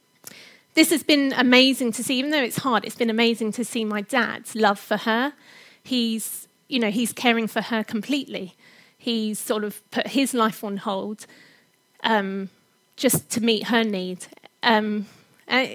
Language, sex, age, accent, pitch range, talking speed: English, female, 30-49, British, 215-250 Hz, 170 wpm